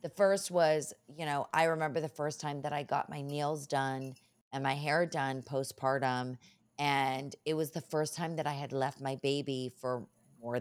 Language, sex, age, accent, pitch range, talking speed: English, female, 30-49, American, 140-175 Hz, 200 wpm